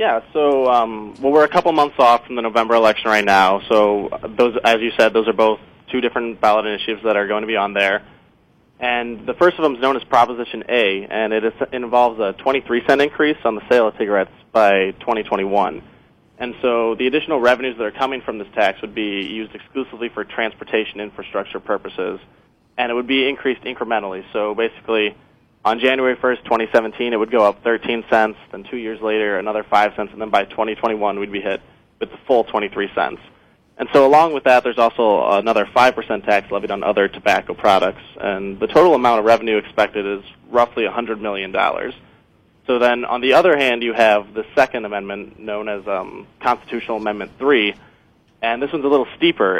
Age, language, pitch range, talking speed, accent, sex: 20-39, English, 105-125 Hz, 200 wpm, American, male